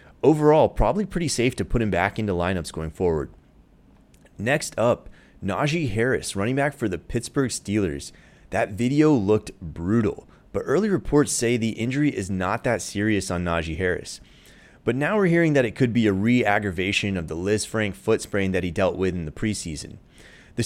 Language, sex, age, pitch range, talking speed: English, male, 30-49, 95-125 Hz, 185 wpm